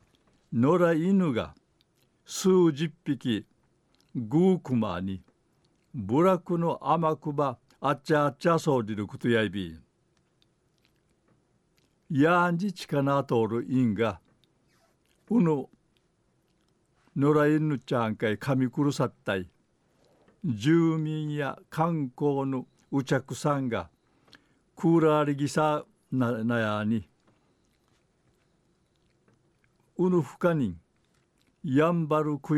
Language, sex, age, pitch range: Japanese, male, 60-79, 115-155 Hz